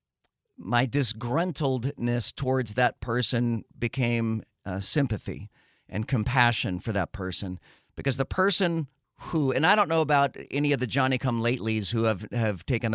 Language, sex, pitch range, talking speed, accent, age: English, male, 110-140 Hz, 155 wpm, American, 40-59